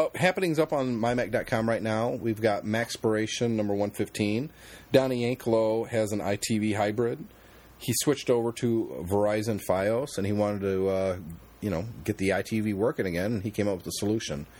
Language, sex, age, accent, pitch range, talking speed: English, male, 30-49, American, 100-120 Hz, 175 wpm